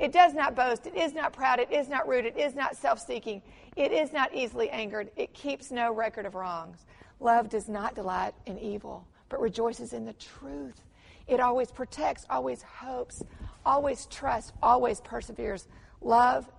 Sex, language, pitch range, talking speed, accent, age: female, English, 205-265 Hz, 175 wpm, American, 40-59